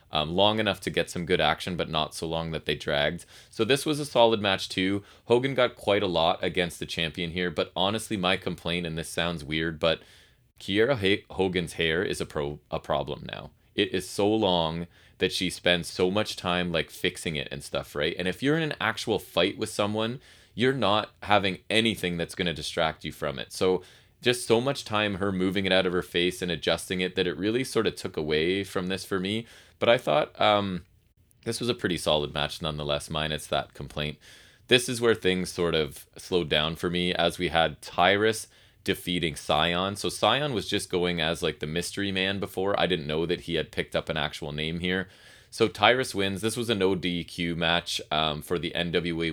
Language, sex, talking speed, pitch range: English, male, 215 wpm, 80-100 Hz